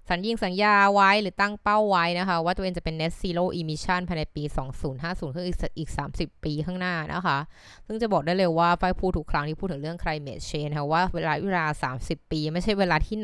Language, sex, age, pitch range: Thai, female, 20-39, 150-190 Hz